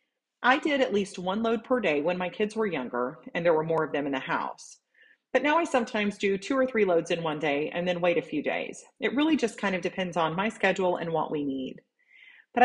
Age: 30-49